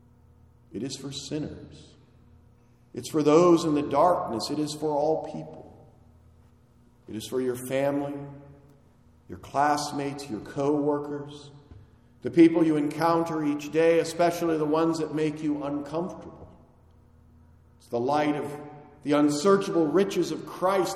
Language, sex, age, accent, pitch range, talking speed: English, male, 50-69, American, 115-165 Hz, 130 wpm